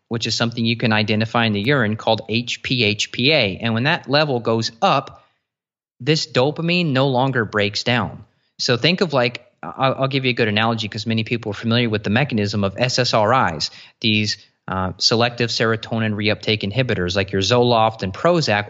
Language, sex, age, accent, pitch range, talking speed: English, male, 30-49, American, 110-130 Hz, 175 wpm